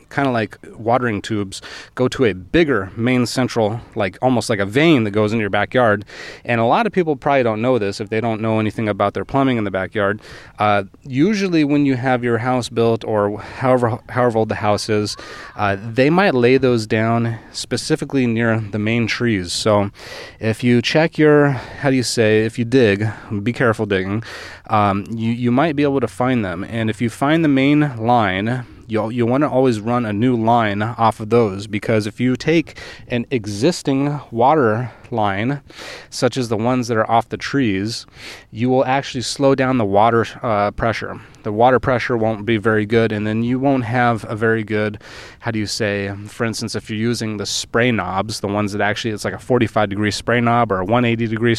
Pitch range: 105-125 Hz